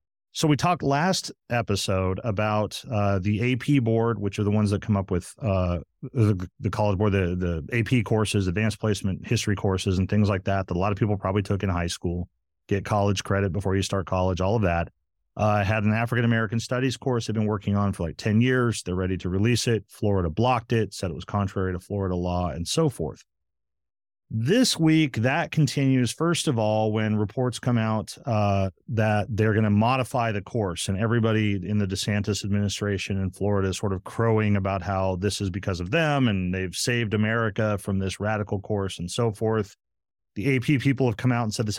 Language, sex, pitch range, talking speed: English, male, 95-115 Hz, 210 wpm